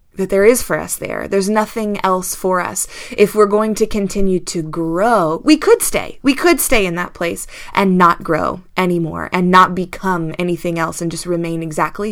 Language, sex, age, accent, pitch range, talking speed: English, female, 20-39, American, 180-220 Hz, 200 wpm